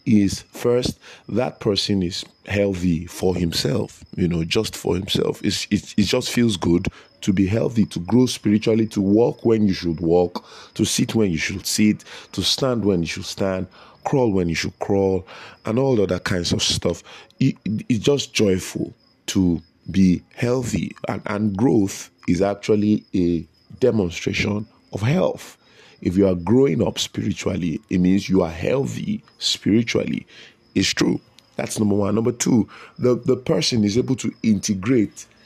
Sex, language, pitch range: male, English, 95-125 Hz